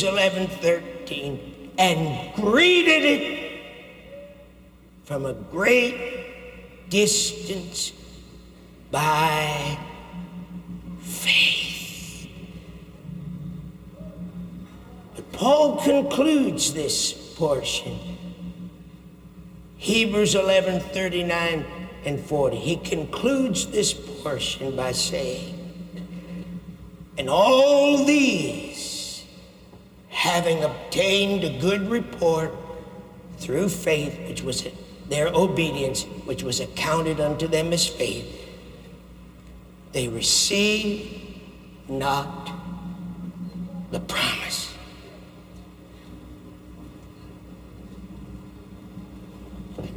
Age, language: 60-79, English